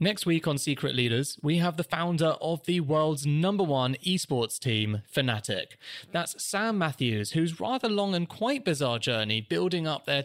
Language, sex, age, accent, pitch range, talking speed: English, male, 20-39, British, 115-165 Hz, 175 wpm